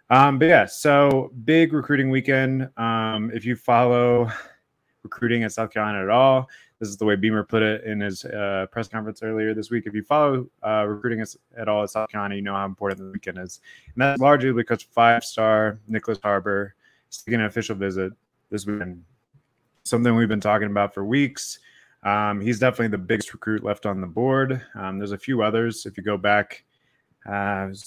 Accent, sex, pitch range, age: American, male, 100-120 Hz, 20-39